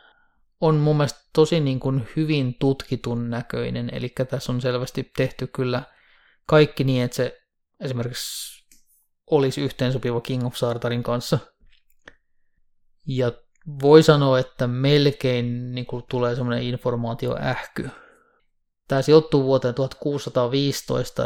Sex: male